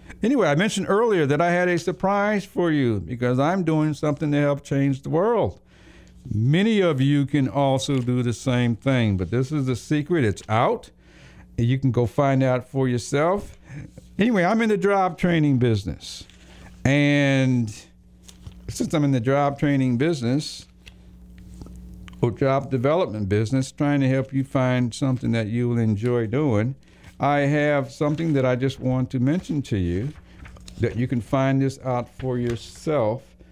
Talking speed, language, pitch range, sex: 165 wpm, English, 115-150 Hz, male